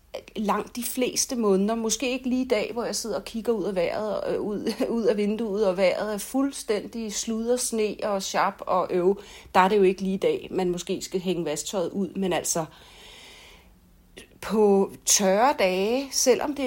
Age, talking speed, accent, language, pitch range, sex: 40-59, 190 wpm, native, Danish, 185-230 Hz, female